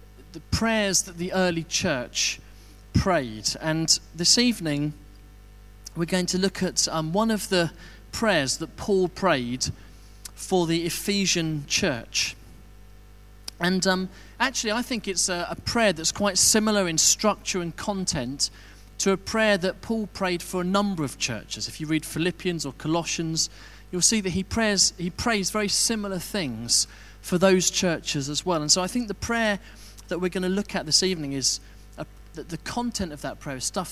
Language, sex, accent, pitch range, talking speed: English, male, British, 115-185 Hz, 180 wpm